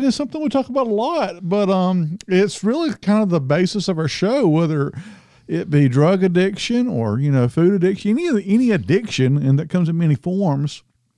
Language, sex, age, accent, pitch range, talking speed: English, male, 50-69, American, 120-170 Hz, 200 wpm